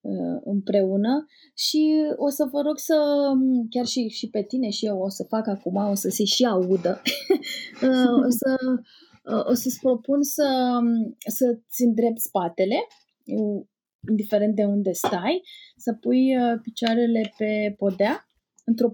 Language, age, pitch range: Romanian, 20-39, 210-275 Hz